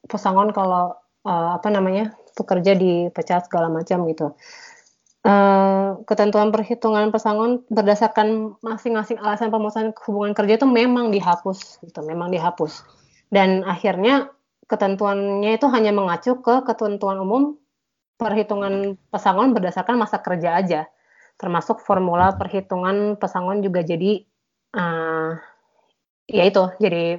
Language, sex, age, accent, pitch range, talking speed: Indonesian, female, 20-39, native, 175-215 Hz, 115 wpm